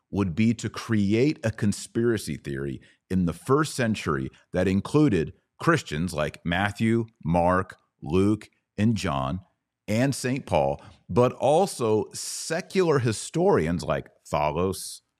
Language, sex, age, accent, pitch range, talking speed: English, male, 40-59, American, 85-115 Hz, 115 wpm